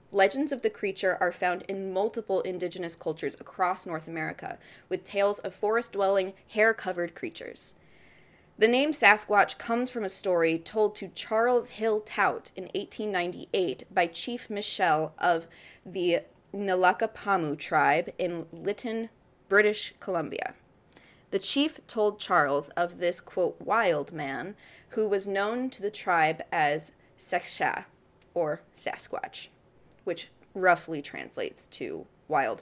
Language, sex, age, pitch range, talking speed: English, female, 20-39, 175-215 Hz, 130 wpm